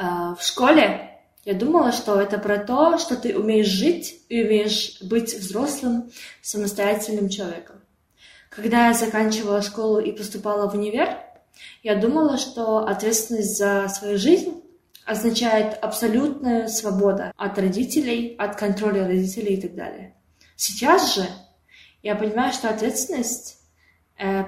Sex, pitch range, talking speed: female, 195-235 Hz, 125 wpm